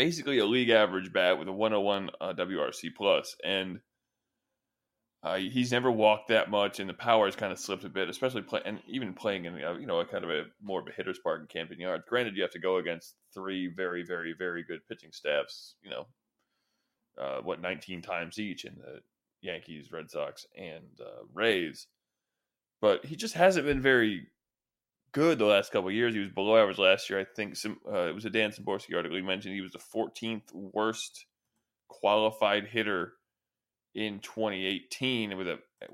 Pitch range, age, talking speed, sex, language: 95-120 Hz, 20-39, 195 wpm, male, English